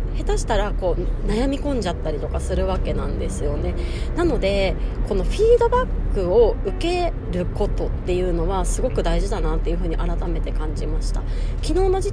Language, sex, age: Japanese, female, 30-49